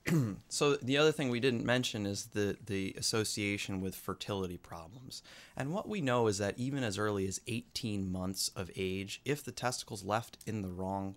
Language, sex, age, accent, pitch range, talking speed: English, male, 30-49, American, 95-120 Hz, 195 wpm